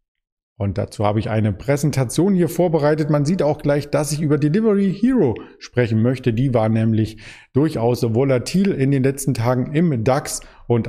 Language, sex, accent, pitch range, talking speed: German, male, German, 110-145 Hz, 170 wpm